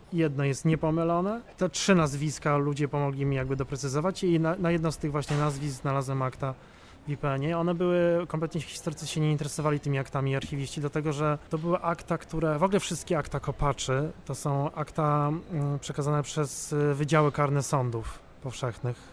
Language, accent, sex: Polish, native, male